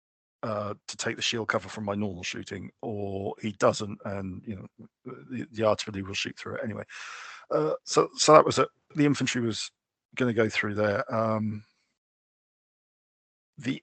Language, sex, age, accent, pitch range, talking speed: English, male, 40-59, British, 105-125 Hz, 170 wpm